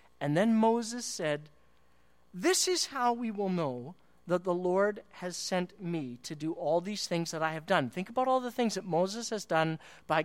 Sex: male